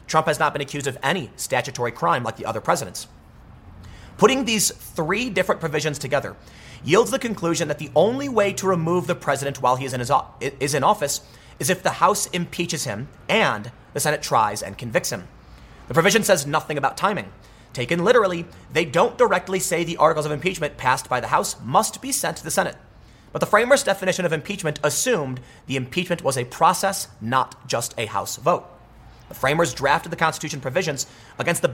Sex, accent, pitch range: male, American, 130-190 Hz